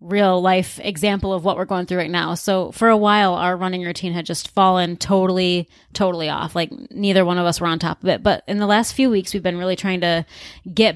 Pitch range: 180-220 Hz